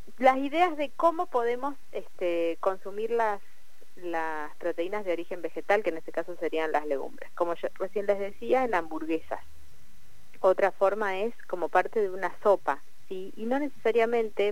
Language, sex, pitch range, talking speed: Spanish, female, 165-215 Hz, 160 wpm